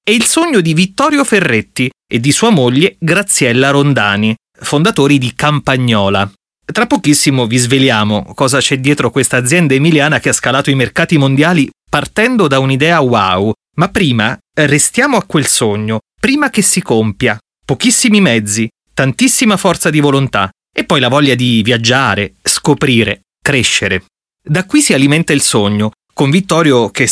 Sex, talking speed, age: male, 150 wpm, 30-49